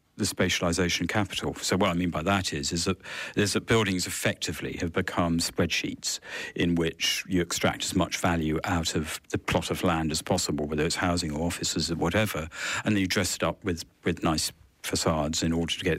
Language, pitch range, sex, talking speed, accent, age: English, 85-100 Hz, male, 205 wpm, British, 50-69